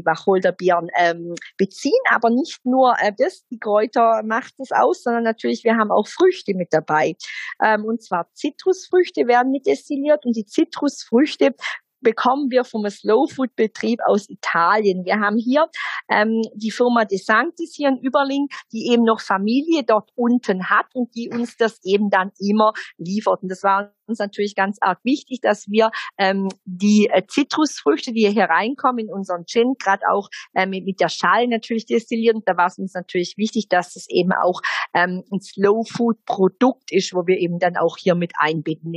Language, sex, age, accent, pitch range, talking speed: German, female, 40-59, German, 190-245 Hz, 180 wpm